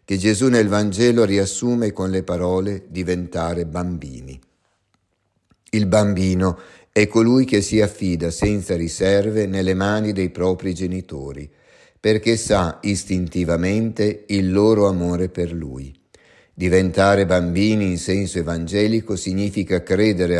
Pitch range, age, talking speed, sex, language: 90-105 Hz, 50-69, 115 wpm, male, Italian